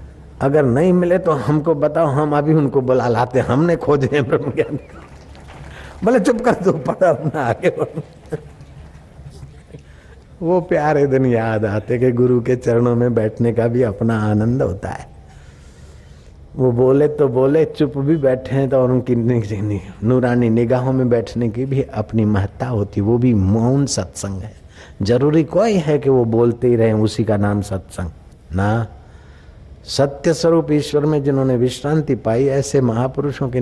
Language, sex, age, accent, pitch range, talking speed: Hindi, male, 50-69, native, 105-145 Hz, 150 wpm